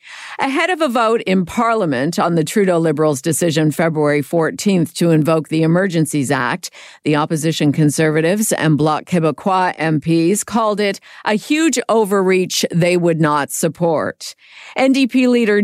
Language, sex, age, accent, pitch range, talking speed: English, female, 50-69, American, 160-205 Hz, 140 wpm